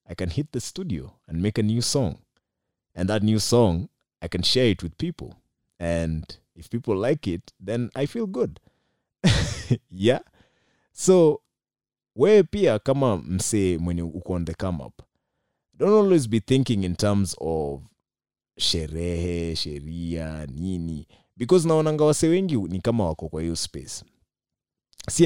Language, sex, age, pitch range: Swahili, male, 30-49, 85-115 Hz